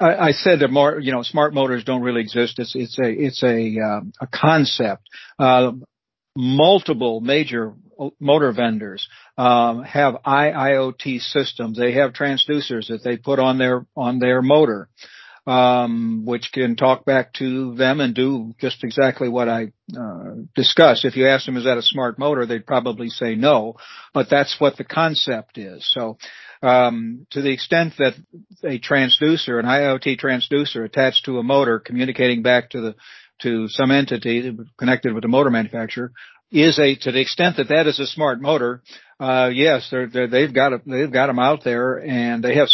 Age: 60-79